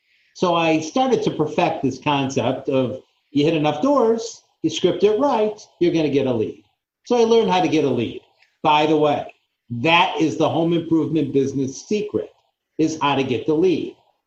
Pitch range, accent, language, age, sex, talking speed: 135-175 Hz, American, English, 50-69, male, 190 wpm